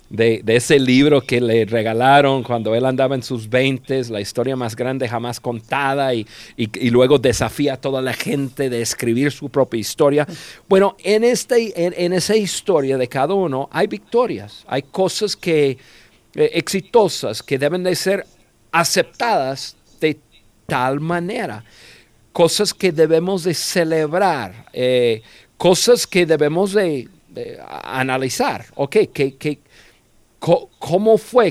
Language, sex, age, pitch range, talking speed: Spanish, male, 50-69, 125-175 Hz, 145 wpm